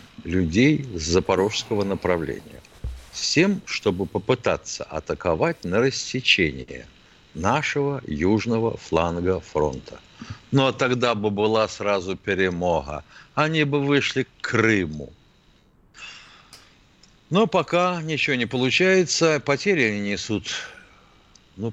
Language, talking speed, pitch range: Russian, 100 wpm, 90-130 Hz